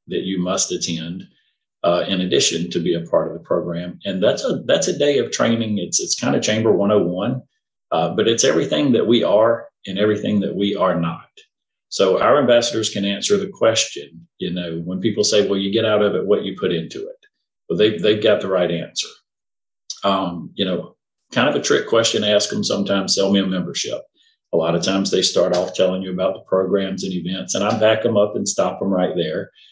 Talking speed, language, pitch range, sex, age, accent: 220 wpm, English, 90-120 Hz, male, 40-59, American